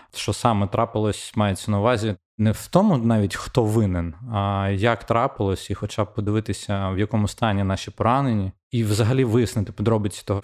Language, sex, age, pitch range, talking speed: Ukrainian, male, 20-39, 100-115 Hz, 165 wpm